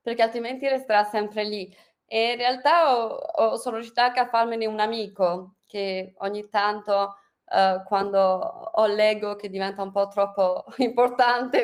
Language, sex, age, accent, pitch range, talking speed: Italian, female, 20-39, native, 200-250 Hz, 155 wpm